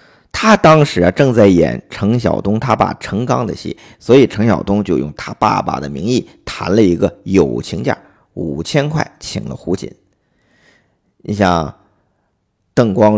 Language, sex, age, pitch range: Chinese, male, 50-69, 95-120 Hz